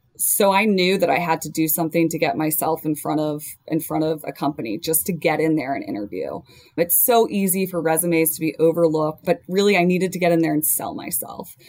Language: English